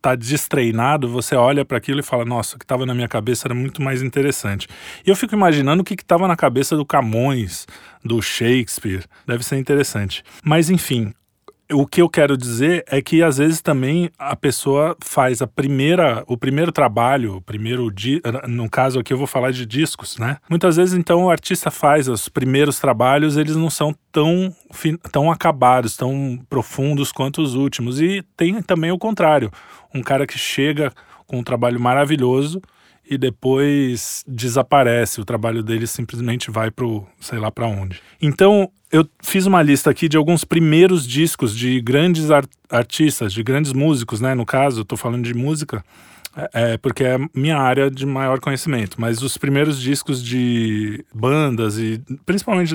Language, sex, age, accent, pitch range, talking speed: Portuguese, male, 20-39, Brazilian, 120-155 Hz, 180 wpm